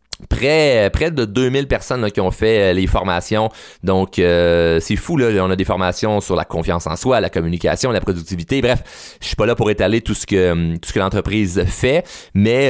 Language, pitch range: French, 95-135 Hz